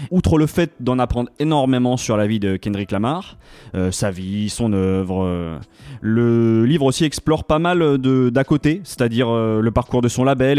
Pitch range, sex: 110-140 Hz, male